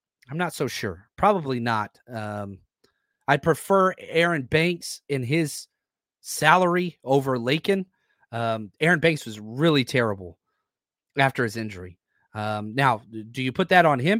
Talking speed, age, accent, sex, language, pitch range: 140 wpm, 30-49, American, male, English, 120-195 Hz